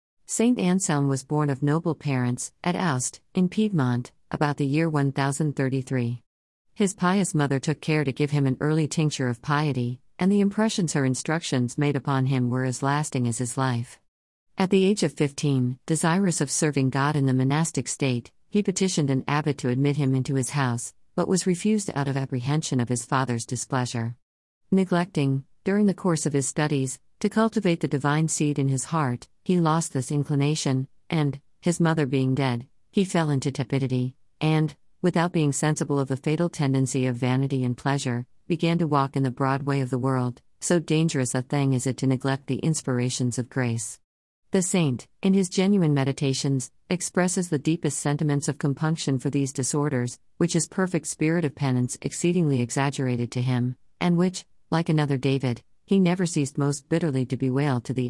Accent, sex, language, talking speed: American, female, Malayalam, 180 wpm